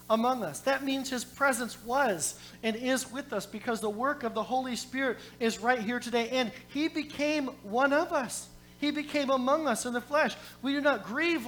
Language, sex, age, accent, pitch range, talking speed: English, male, 40-59, American, 200-270 Hz, 205 wpm